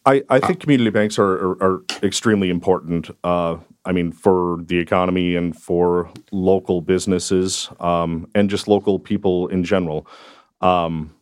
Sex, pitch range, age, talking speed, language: male, 85-100 Hz, 30-49, 150 wpm, English